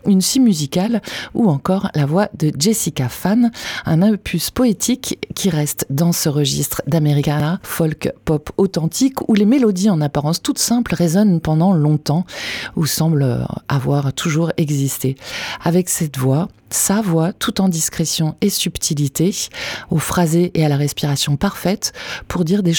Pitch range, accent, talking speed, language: 150-195 Hz, French, 150 wpm, French